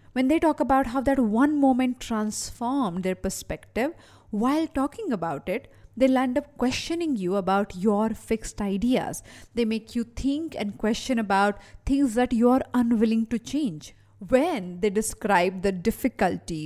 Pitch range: 195-270 Hz